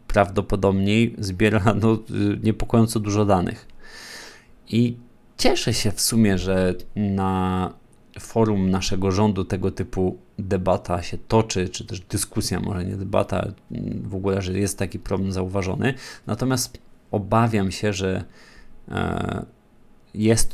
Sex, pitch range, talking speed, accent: male, 95-110 Hz, 110 wpm, native